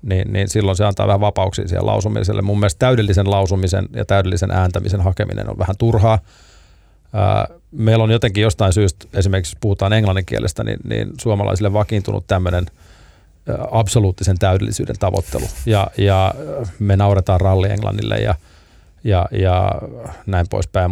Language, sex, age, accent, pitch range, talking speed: Finnish, male, 30-49, native, 95-110 Hz, 135 wpm